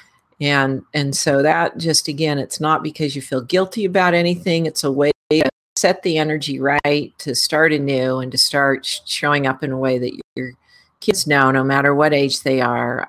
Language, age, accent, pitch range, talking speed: English, 40-59, American, 135-175 Hz, 195 wpm